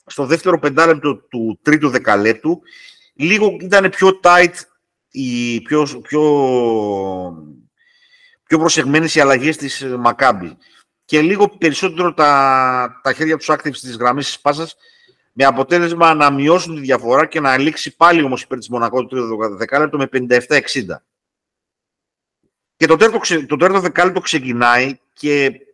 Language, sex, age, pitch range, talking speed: Greek, male, 50-69, 125-175 Hz, 125 wpm